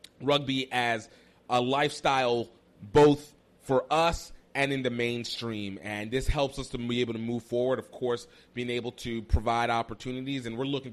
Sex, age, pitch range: male, 30-49, 115-165 Hz